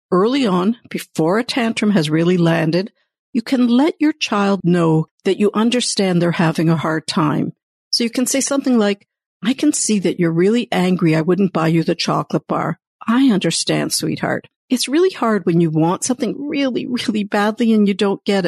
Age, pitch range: 60-79, 170-245 Hz